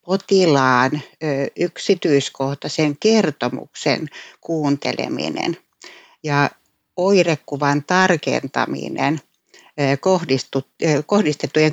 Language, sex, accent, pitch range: Finnish, female, native, 145-185 Hz